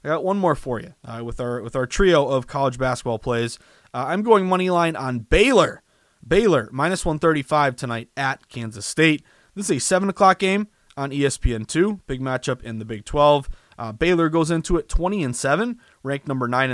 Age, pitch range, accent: 20-39, 125-170 Hz, American